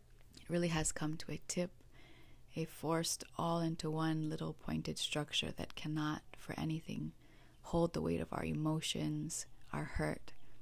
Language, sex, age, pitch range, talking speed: English, female, 30-49, 130-170 Hz, 145 wpm